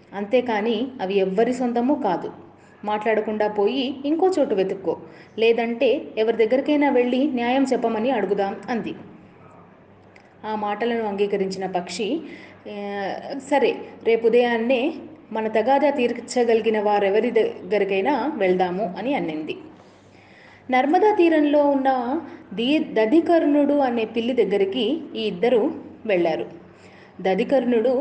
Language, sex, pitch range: Telugu, female, 195-265 Hz